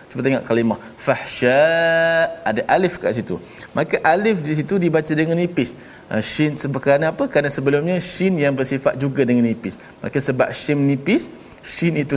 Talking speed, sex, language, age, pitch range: 165 wpm, male, Malayalam, 20-39, 120-165 Hz